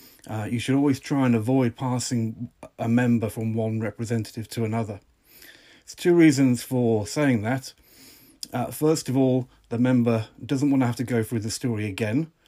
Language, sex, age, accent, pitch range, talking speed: English, male, 40-59, British, 115-130 Hz, 180 wpm